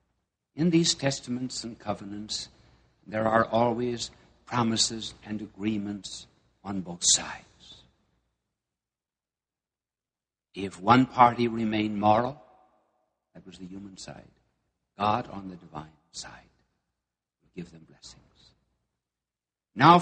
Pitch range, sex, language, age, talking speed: 95-130 Hz, male, English, 60-79, 100 wpm